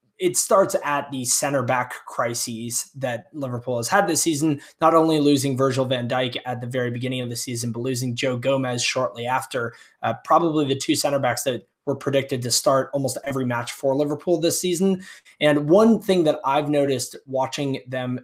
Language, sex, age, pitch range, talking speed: English, male, 20-39, 130-160 Hz, 190 wpm